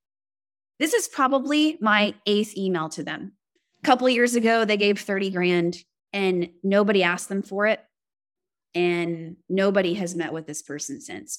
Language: English